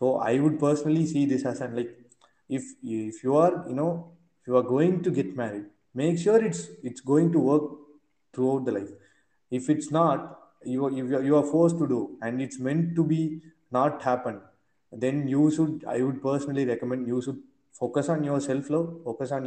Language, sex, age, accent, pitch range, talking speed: Tamil, male, 20-39, native, 125-155 Hz, 205 wpm